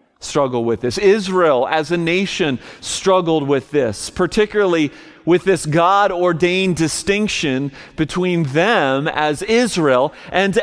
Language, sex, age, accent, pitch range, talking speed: English, male, 40-59, American, 140-195 Hz, 115 wpm